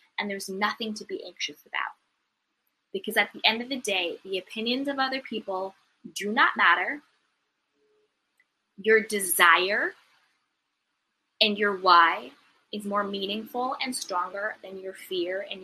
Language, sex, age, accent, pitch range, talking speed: English, female, 20-39, American, 195-245 Hz, 140 wpm